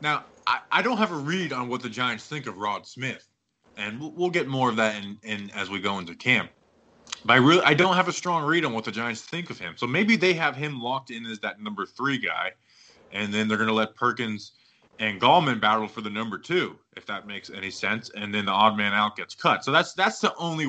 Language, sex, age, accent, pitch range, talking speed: English, male, 20-39, American, 100-135 Hz, 260 wpm